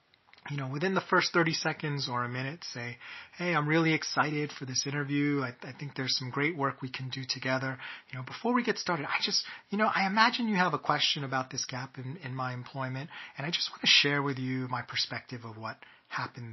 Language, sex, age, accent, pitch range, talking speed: English, male, 30-49, American, 125-155 Hz, 240 wpm